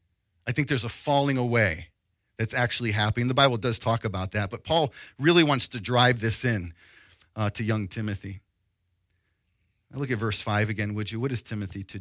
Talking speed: 195 wpm